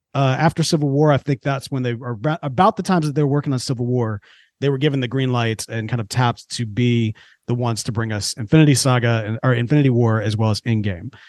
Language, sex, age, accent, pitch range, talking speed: English, male, 30-49, American, 120-180 Hz, 255 wpm